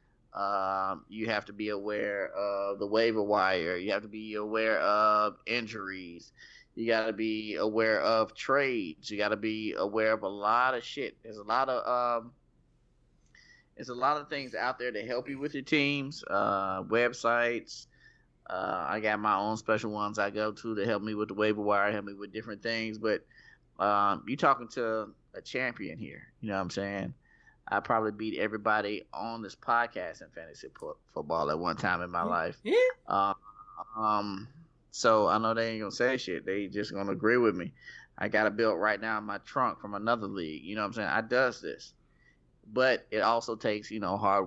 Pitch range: 105-115 Hz